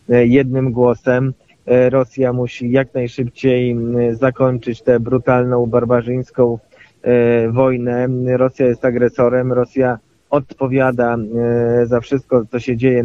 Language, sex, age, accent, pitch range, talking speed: Polish, male, 20-39, native, 120-130 Hz, 95 wpm